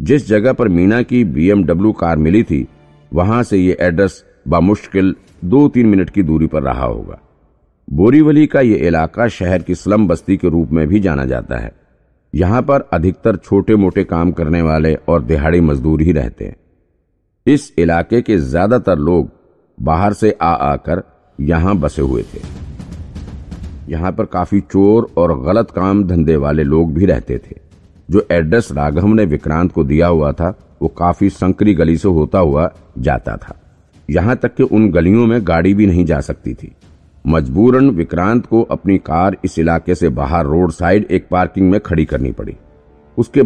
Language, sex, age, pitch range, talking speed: Hindi, male, 50-69, 80-105 Hz, 140 wpm